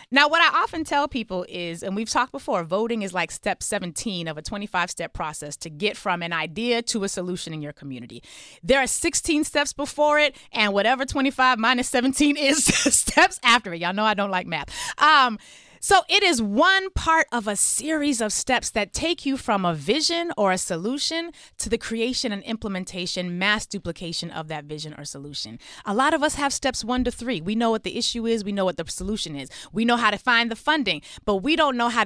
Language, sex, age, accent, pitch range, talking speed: English, female, 30-49, American, 190-275 Hz, 220 wpm